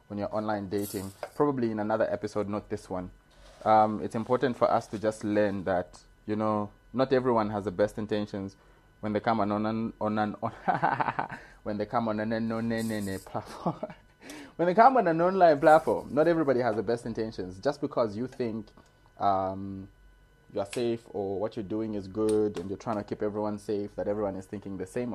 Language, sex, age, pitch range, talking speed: English, male, 20-39, 105-125 Hz, 195 wpm